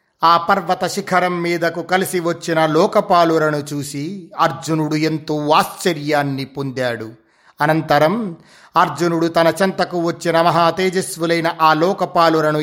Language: Telugu